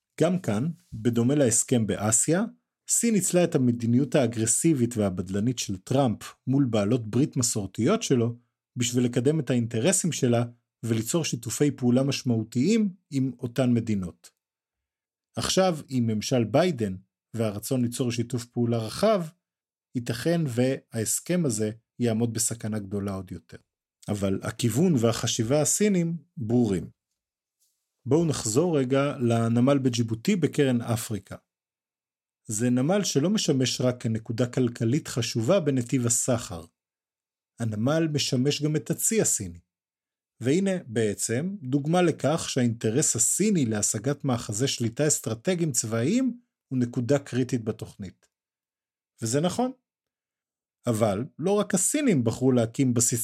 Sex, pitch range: male, 115-150 Hz